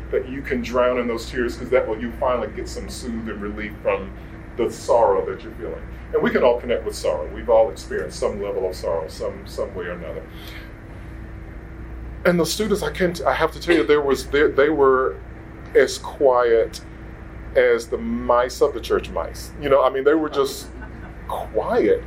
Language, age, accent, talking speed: English, 40-59, American, 200 wpm